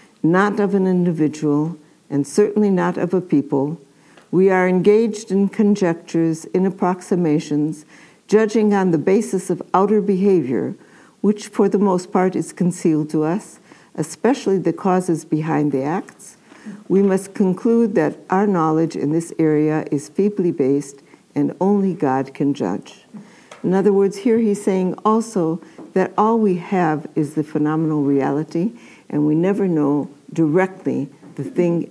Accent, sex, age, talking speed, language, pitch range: American, female, 60-79, 145 wpm, English, 150-195 Hz